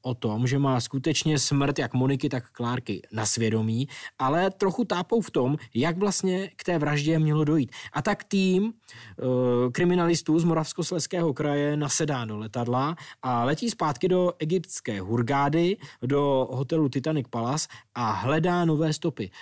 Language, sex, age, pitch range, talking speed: Czech, male, 20-39, 120-155 Hz, 150 wpm